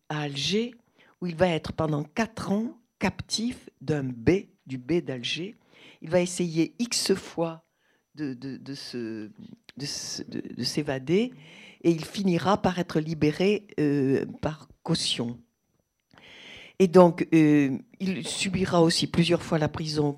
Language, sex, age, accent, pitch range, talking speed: French, female, 60-79, French, 145-195 Hz, 140 wpm